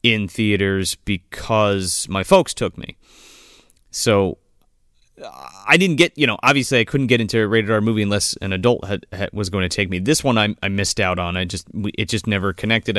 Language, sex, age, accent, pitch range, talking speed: English, male, 30-49, American, 95-125 Hz, 215 wpm